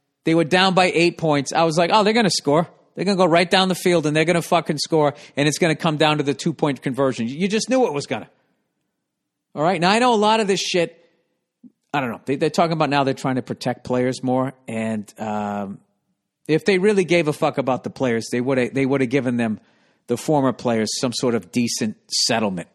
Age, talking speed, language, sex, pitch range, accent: 50-69, 245 wpm, English, male, 115-160 Hz, American